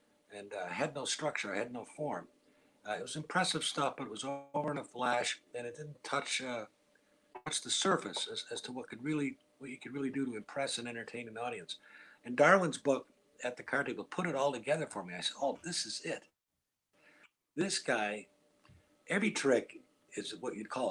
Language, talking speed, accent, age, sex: English, 210 wpm, American, 60-79, male